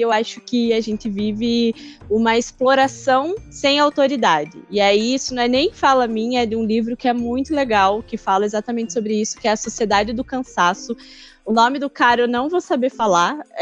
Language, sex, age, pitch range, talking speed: Portuguese, female, 10-29, 220-275 Hz, 205 wpm